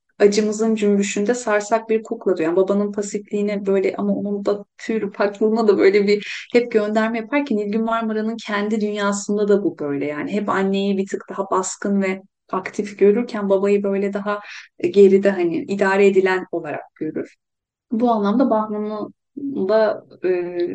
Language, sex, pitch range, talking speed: Turkish, female, 190-225 Hz, 150 wpm